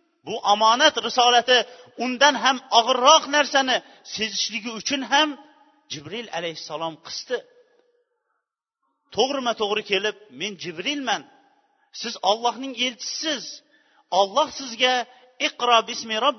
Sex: male